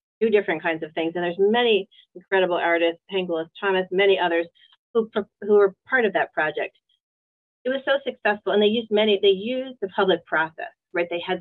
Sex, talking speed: female, 195 wpm